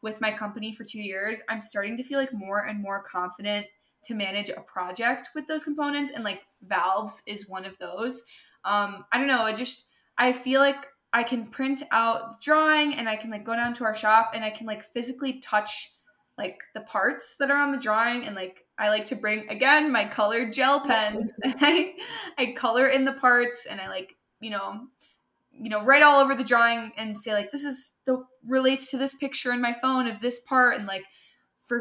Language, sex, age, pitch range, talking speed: English, female, 10-29, 215-265 Hz, 215 wpm